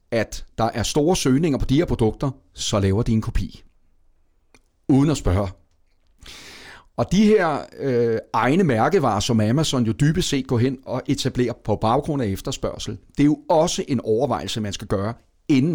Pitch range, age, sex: 105-140 Hz, 40-59, male